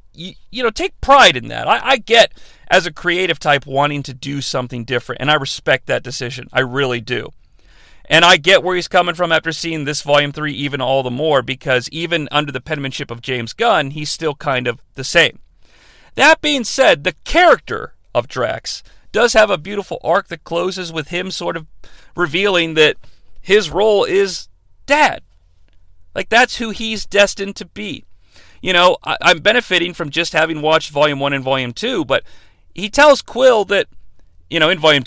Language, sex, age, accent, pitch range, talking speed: English, male, 40-59, American, 130-180 Hz, 185 wpm